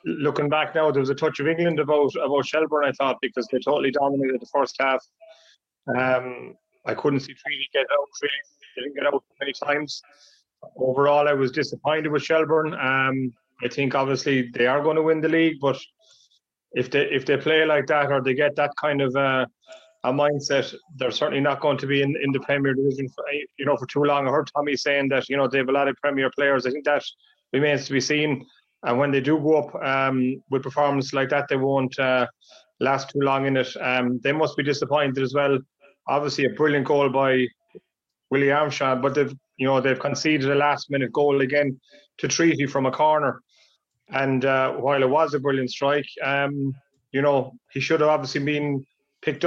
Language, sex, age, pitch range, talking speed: English, male, 30-49, 135-150 Hz, 210 wpm